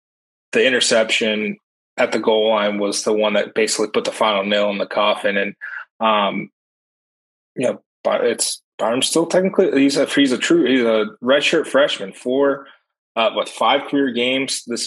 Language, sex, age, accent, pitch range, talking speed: English, male, 20-39, American, 110-125 Hz, 180 wpm